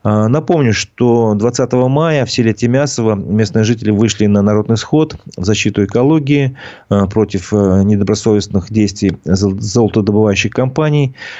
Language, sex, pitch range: Russian, male, 100-125 Hz